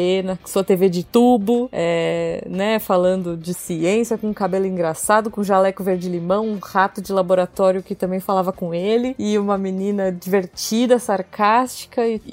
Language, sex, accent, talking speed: Portuguese, female, Brazilian, 155 wpm